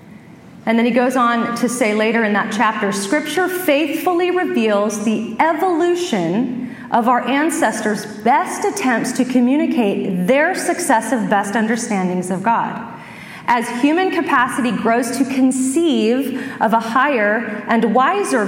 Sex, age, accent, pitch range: female, 30-49, American, 210-285 Hz